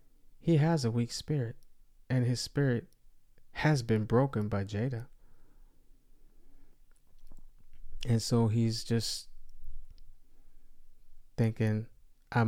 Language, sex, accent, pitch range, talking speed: English, male, American, 110-125 Hz, 90 wpm